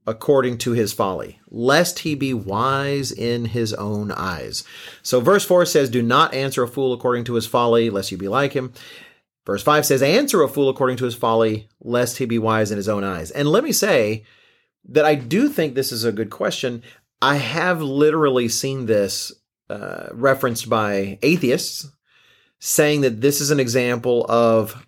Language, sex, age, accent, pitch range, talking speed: English, male, 40-59, American, 115-150 Hz, 185 wpm